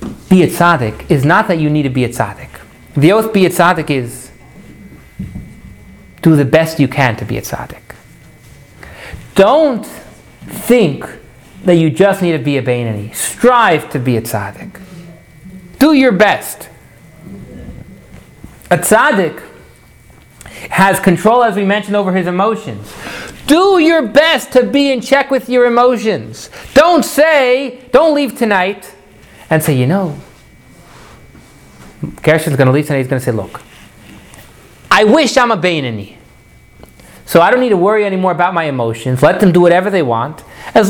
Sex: male